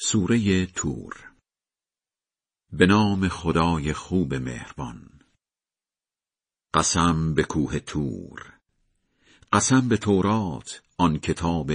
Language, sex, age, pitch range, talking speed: Persian, male, 50-69, 80-105 Hz, 80 wpm